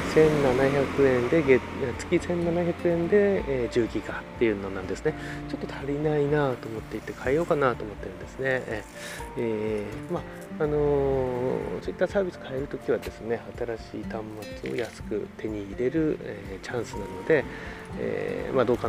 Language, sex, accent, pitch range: Japanese, male, native, 110-145 Hz